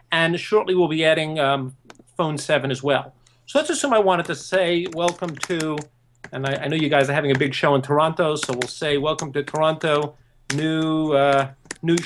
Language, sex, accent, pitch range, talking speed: English, male, American, 140-190 Hz, 205 wpm